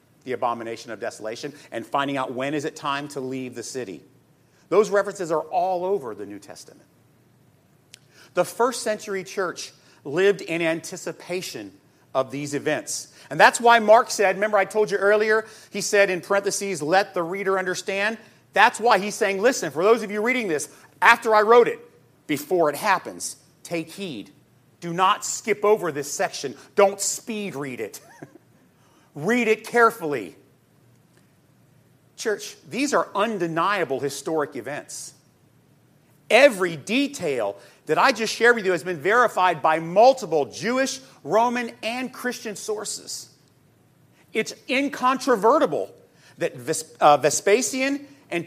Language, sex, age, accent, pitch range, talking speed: English, male, 40-59, American, 160-225 Hz, 140 wpm